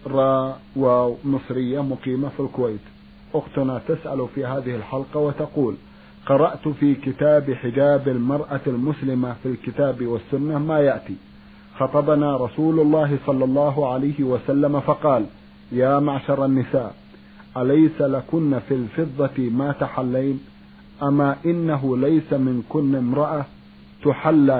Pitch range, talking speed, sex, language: 125-150 Hz, 110 wpm, male, Arabic